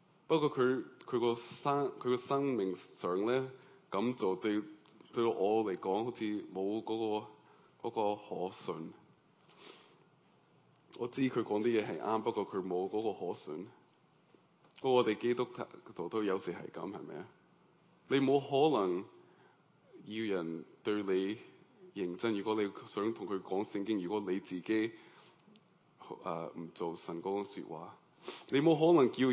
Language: Chinese